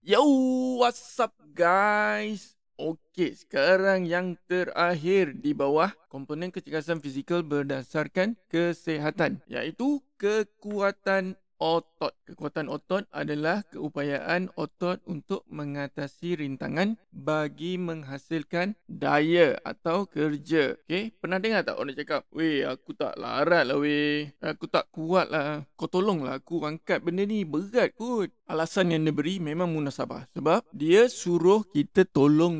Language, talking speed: Malay, 120 wpm